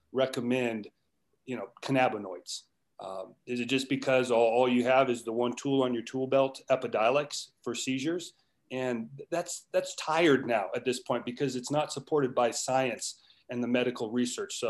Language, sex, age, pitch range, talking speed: English, male, 30-49, 115-135 Hz, 175 wpm